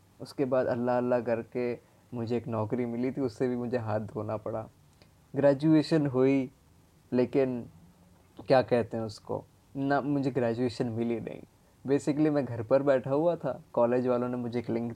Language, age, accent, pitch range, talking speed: Hindi, 20-39, native, 115-135 Hz, 160 wpm